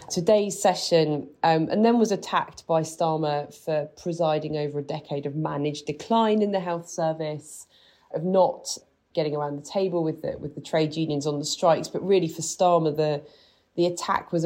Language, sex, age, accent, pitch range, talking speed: English, female, 30-49, British, 145-180 Hz, 185 wpm